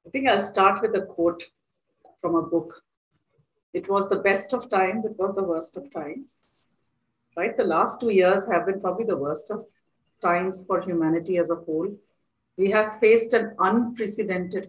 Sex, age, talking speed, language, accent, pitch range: female, 40-59, 180 wpm, English, Indian, 175-220 Hz